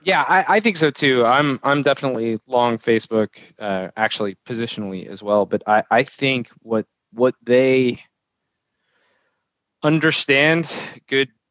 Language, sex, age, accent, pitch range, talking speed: English, male, 20-39, American, 100-125 Hz, 130 wpm